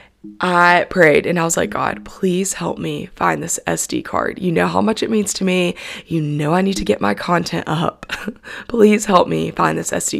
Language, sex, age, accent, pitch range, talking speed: English, female, 20-39, American, 160-195 Hz, 220 wpm